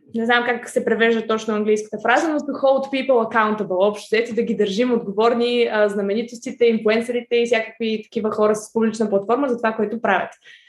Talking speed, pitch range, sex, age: 185 wpm, 215-265 Hz, female, 20-39